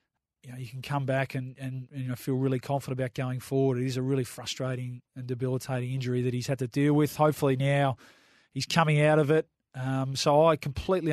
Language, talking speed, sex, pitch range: English, 220 wpm, male, 125-140 Hz